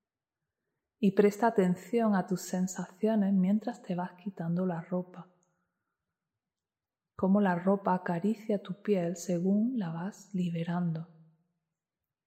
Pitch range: 175-205 Hz